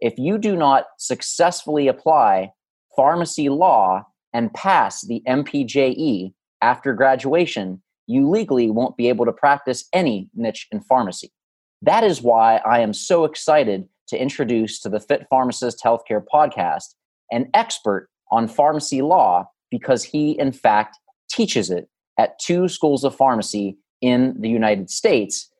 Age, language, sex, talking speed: 30-49, English, male, 140 wpm